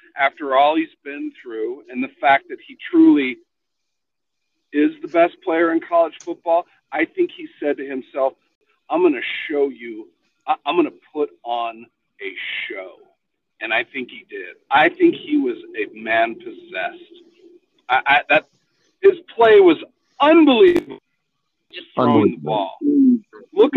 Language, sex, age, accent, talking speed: English, male, 50-69, American, 150 wpm